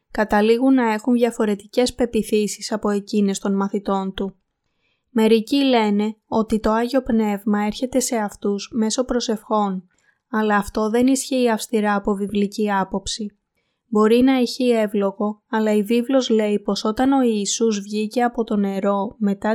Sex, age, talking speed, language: female, 20-39, 140 wpm, Greek